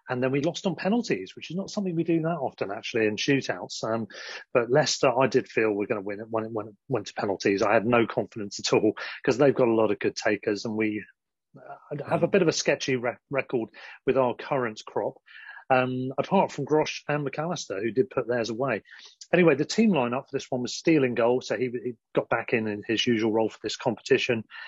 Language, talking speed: English, 240 wpm